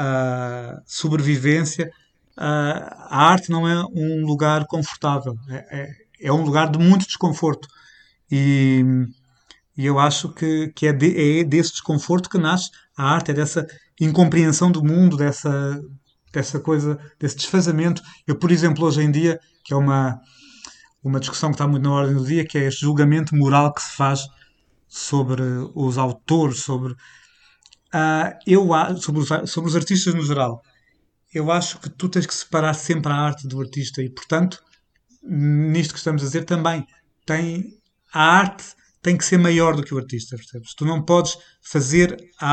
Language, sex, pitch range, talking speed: Portuguese, male, 140-165 Hz, 160 wpm